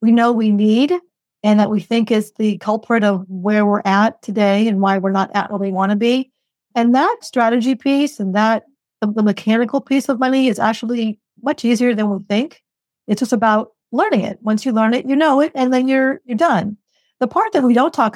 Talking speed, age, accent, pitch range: 220 wpm, 40-59, American, 210-245 Hz